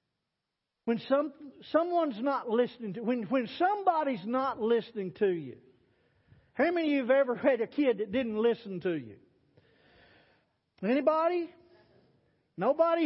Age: 50-69